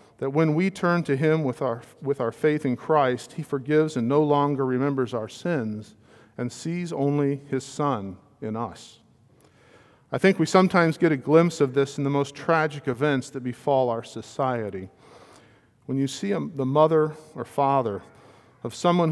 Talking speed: 175 wpm